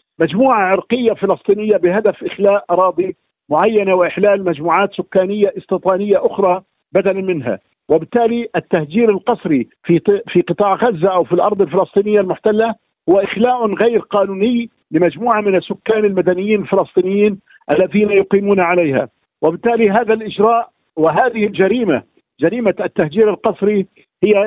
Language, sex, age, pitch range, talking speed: Arabic, male, 50-69, 185-220 Hz, 115 wpm